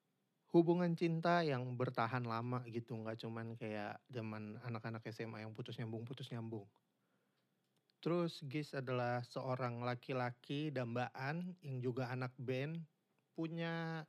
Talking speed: 120 wpm